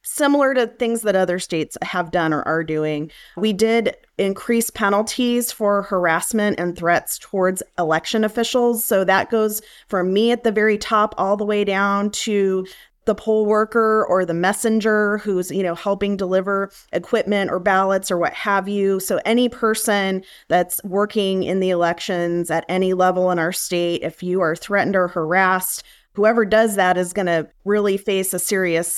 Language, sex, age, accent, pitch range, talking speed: English, female, 30-49, American, 175-220 Hz, 175 wpm